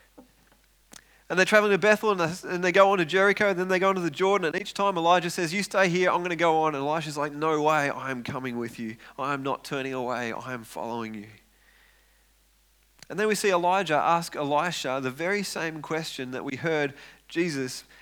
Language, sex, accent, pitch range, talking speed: English, male, Australian, 130-175 Hz, 210 wpm